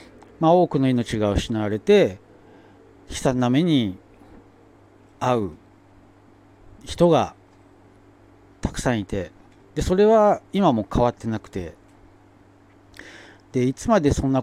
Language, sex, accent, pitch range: Japanese, male, native, 95-130 Hz